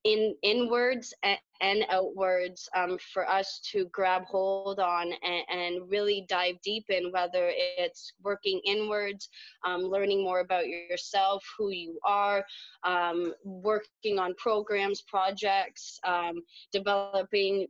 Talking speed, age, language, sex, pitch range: 125 wpm, 20-39, English, female, 180-205 Hz